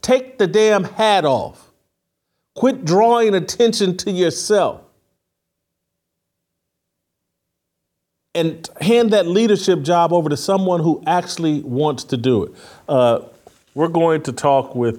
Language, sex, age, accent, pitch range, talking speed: English, male, 50-69, American, 120-175 Hz, 120 wpm